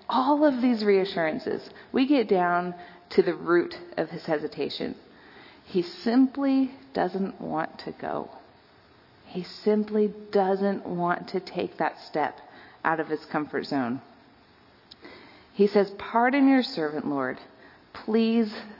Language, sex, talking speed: English, female, 125 wpm